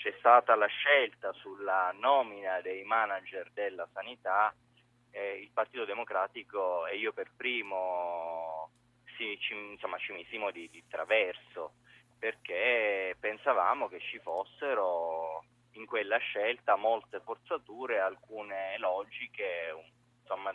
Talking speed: 105 wpm